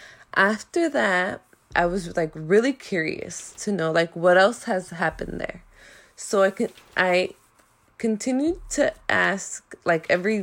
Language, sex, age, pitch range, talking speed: English, female, 20-39, 175-225 Hz, 140 wpm